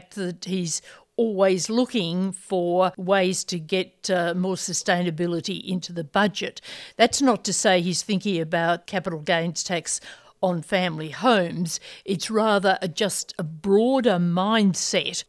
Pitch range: 175-200 Hz